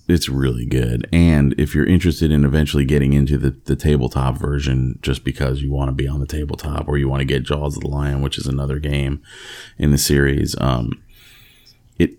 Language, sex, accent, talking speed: English, male, American, 205 wpm